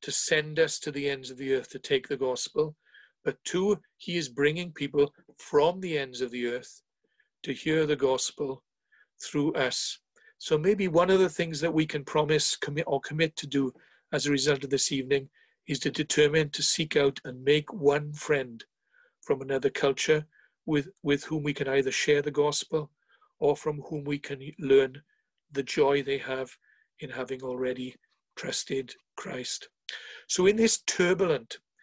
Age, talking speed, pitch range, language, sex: 50-69, 175 wpm, 140-170 Hz, English, male